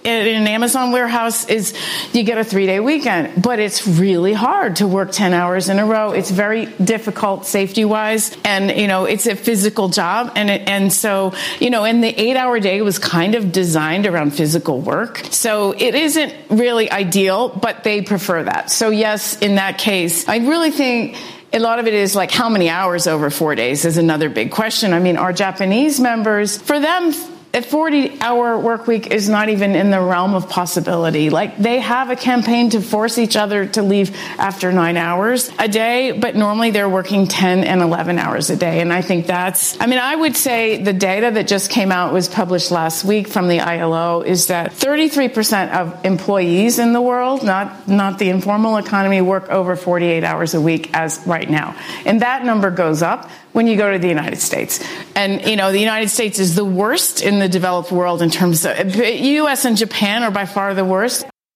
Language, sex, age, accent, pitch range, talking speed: English, female, 40-59, American, 185-230 Hz, 205 wpm